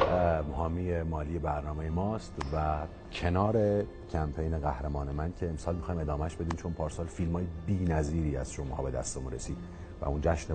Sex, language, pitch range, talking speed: male, Persian, 80-100 Hz, 160 wpm